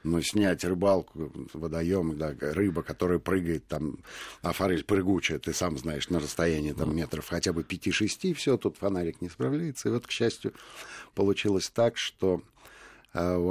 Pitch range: 85-120 Hz